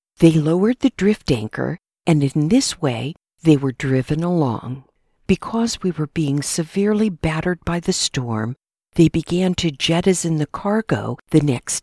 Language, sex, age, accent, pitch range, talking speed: English, female, 50-69, American, 140-190 Hz, 150 wpm